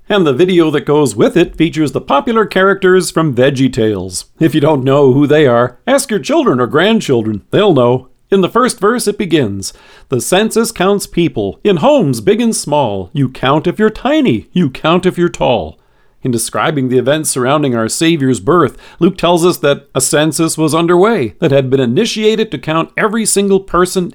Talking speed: 195 wpm